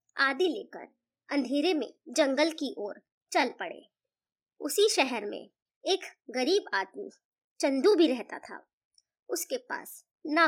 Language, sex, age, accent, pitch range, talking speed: Hindi, male, 20-39, native, 270-350 Hz, 135 wpm